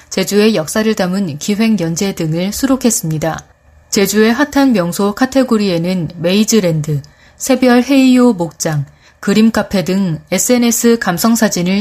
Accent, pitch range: native, 175-245 Hz